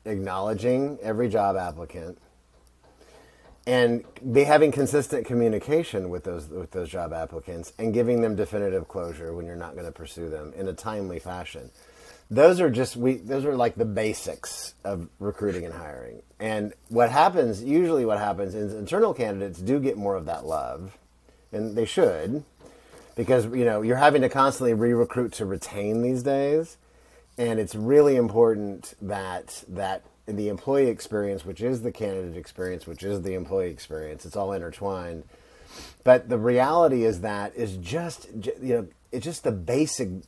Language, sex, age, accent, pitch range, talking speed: English, male, 30-49, American, 95-125 Hz, 165 wpm